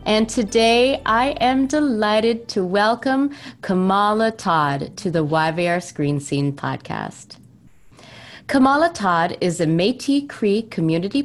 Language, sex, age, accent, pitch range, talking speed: English, female, 30-49, American, 175-265 Hz, 115 wpm